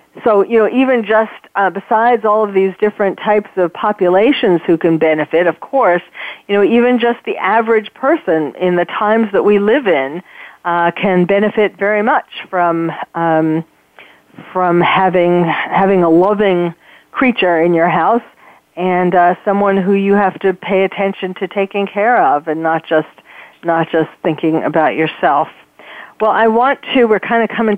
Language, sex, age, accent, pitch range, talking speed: English, female, 40-59, American, 170-205 Hz, 170 wpm